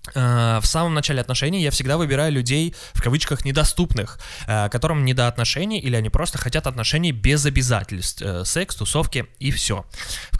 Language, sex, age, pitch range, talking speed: Russian, male, 20-39, 115-155 Hz, 145 wpm